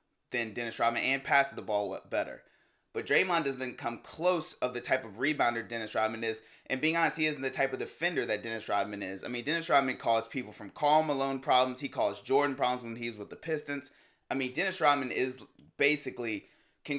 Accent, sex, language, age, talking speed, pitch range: American, male, English, 20-39, 215 wpm, 125-150 Hz